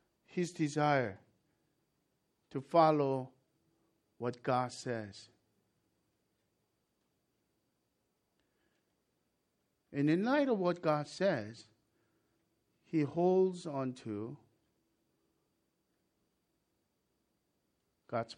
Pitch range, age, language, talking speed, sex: 135-175 Hz, 50-69, English, 60 wpm, male